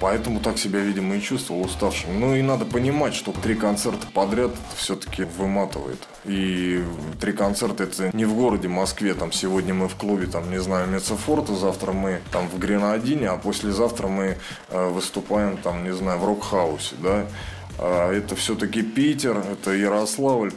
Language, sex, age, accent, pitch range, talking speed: Russian, male, 20-39, native, 95-110 Hz, 165 wpm